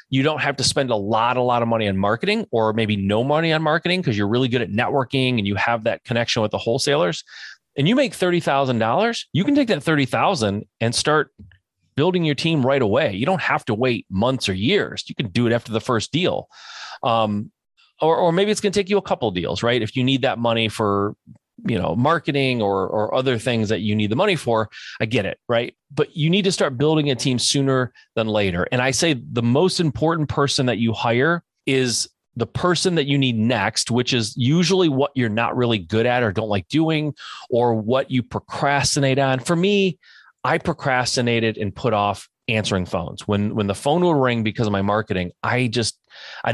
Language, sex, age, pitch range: English, male, 30-49, 110-145 Hz